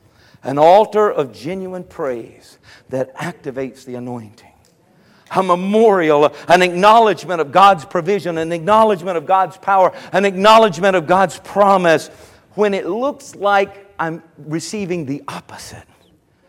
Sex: male